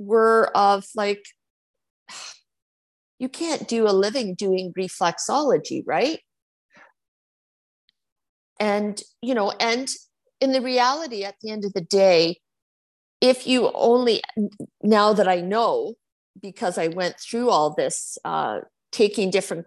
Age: 50-69